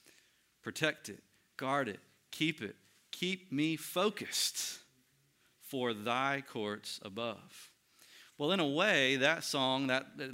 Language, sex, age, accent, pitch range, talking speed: English, male, 40-59, American, 110-145 Hz, 120 wpm